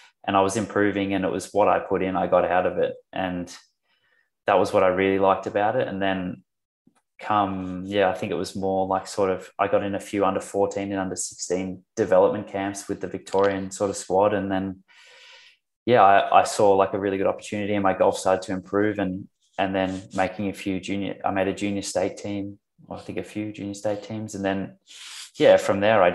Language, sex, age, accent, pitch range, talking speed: English, male, 20-39, Australian, 95-105 Hz, 225 wpm